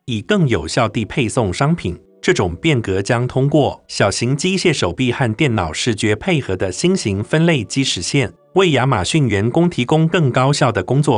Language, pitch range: Chinese, 110-150 Hz